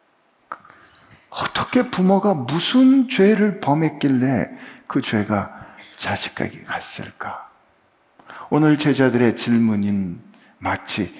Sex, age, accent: male, 50-69, native